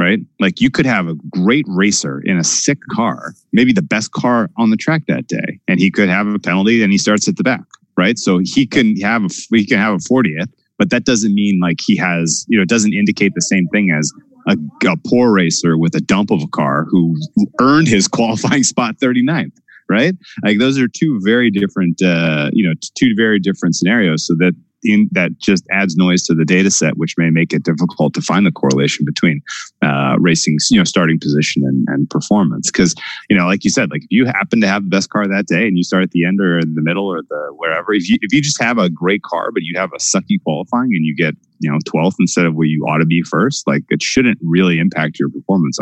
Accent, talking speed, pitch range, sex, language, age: American, 240 wpm, 85-105 Hz, male, English, 30-49